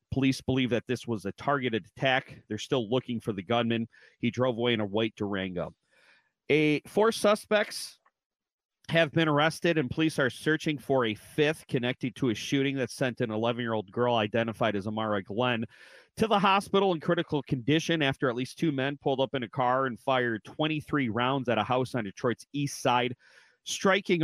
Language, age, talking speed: English, 40-59, 185 wpm